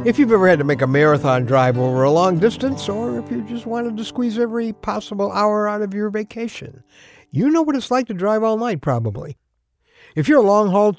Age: 60-79